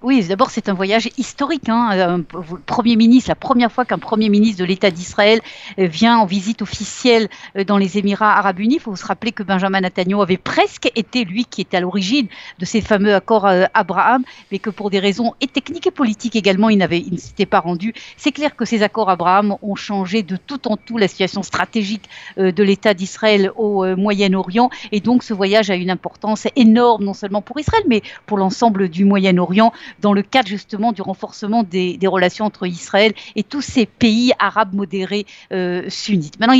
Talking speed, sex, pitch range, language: 200 wpm, female, 190-230 Hz, Italian